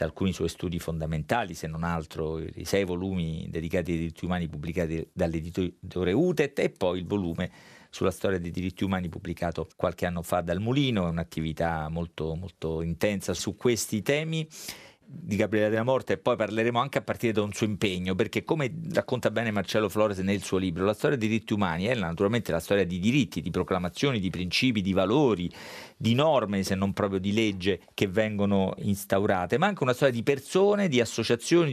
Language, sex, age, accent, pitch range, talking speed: Italian, male, 40-59, native, 90-115 Hz, 185 wpm